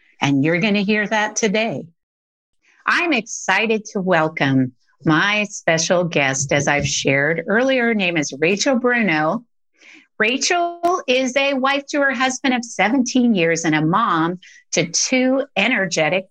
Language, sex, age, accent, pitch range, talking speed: English, female, 50-69, American, 165-240 Hz, 145 wpm